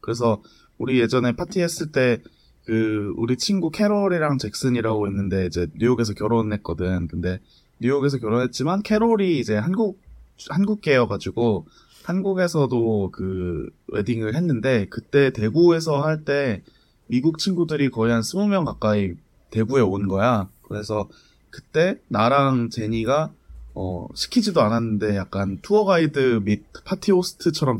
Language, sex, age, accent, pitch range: Korean, male, 20-39, native, 100-145 Hz